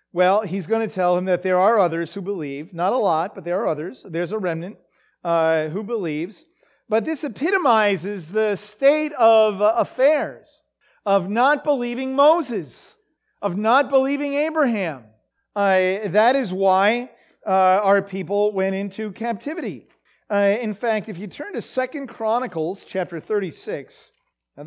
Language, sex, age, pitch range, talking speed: English, male, 40-59, 170-235 Hz, 150 wpm